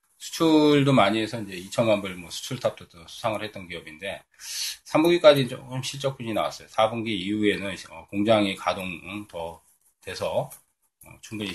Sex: male